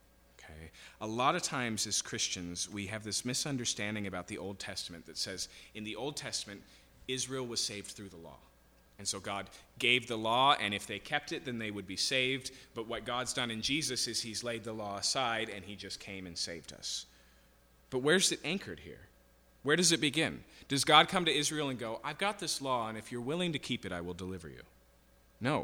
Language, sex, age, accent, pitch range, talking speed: English, male, 30-49, American, 95-135 Hz, 220 wpm